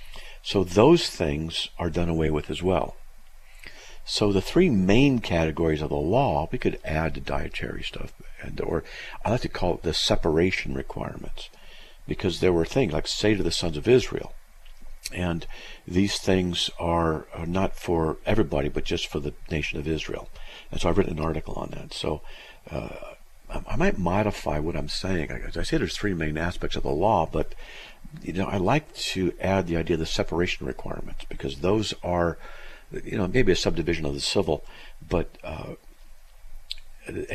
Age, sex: 50-69, male